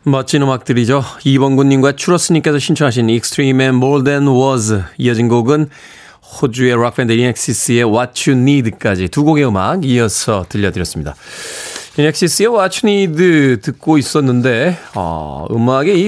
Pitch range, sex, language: 125-165 Hz, male, Korean